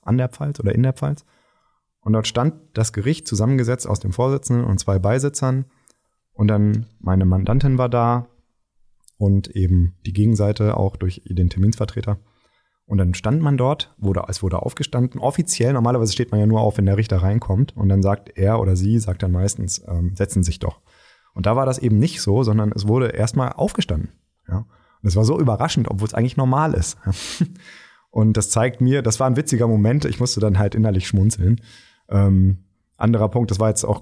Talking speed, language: 195 wpm, German